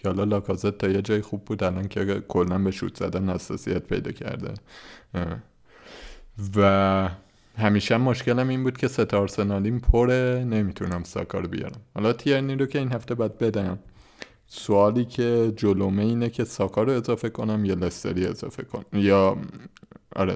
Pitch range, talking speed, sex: 95-115 Hz, 145 wpm, male